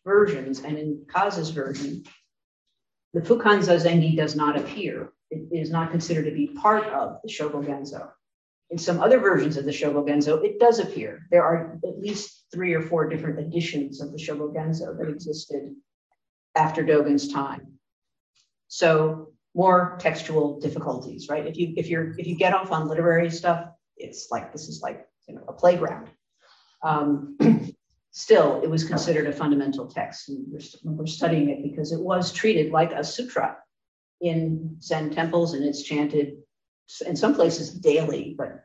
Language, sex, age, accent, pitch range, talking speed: English, female, 50-69, American, 150-175 Hz, 160 wpm